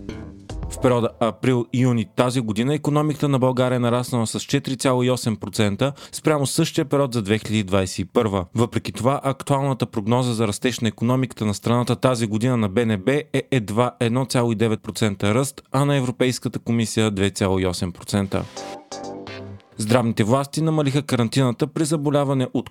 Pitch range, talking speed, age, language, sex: 110-135 Hz, 125 wpm, 30-49, Bulgarian, male